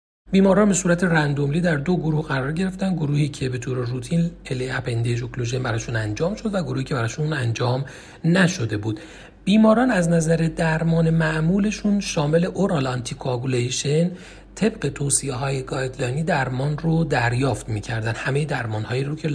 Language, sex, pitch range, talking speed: Persian, male, 125-175 Hz, 150 wpm